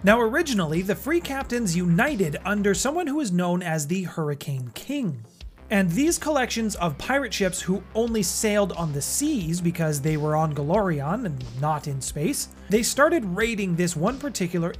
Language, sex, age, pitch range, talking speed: English, male, 30-49, 155-220 Hz, 170 wpm